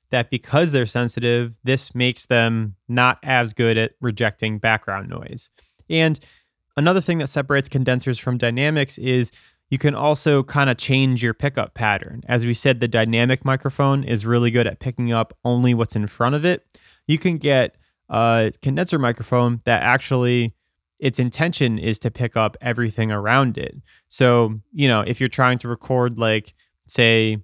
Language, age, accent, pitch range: English, 20-39, American, 115-135 Hz